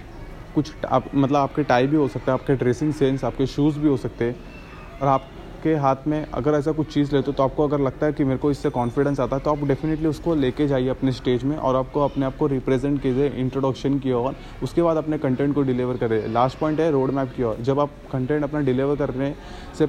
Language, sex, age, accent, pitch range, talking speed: Hindi, male, 20-39, native, 130-150 Hz, 240 wpm